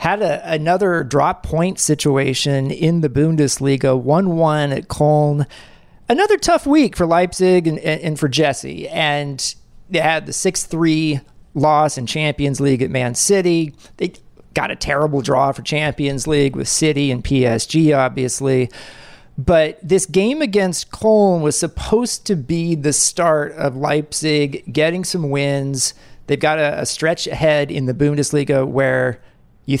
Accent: American